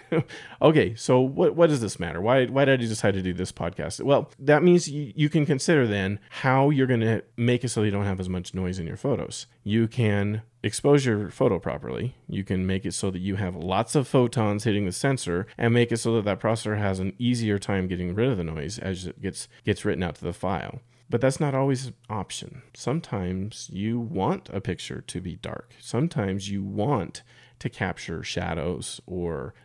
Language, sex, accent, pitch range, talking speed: English, male, American, 95-125 Hz, 215 wpm